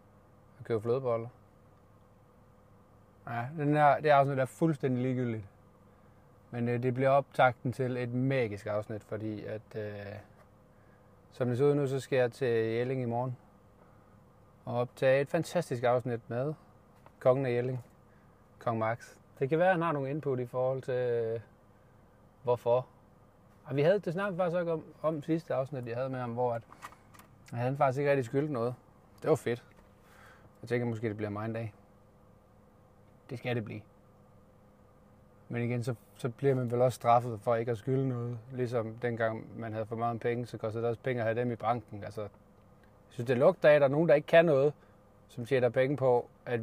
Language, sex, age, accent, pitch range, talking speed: Danish, male, 30-49, native, 105-130 Hz, 190 wpm